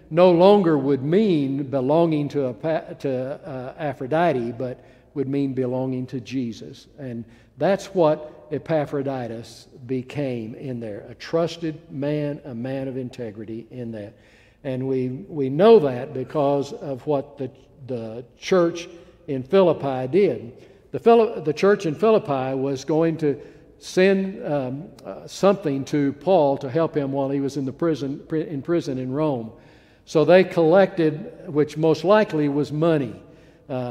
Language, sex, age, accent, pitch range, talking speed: English, male, 60-79, American, 130-165 Hz, 145 wpm